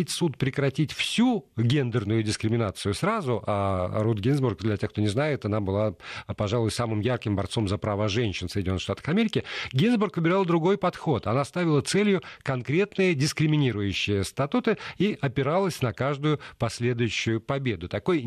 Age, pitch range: 50-69, 110-155 Hz